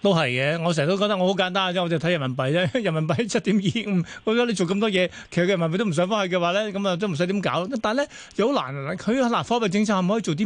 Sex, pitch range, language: male, 160-205 Hz, Chinese